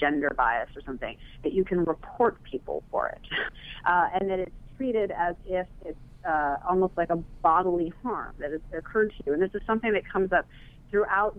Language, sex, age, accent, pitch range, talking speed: English, female, 30-49, American, 150-195 Hz, 200 wpm